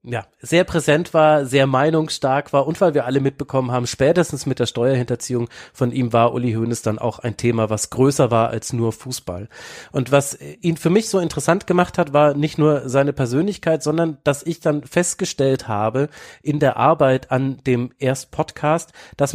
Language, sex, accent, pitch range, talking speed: German, male, German, 130-160 Hz, 185 wpm